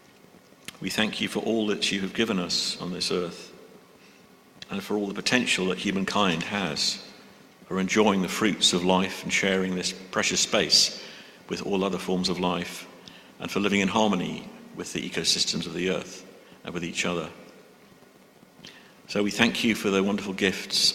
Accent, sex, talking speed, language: British, male, 175 wpm, English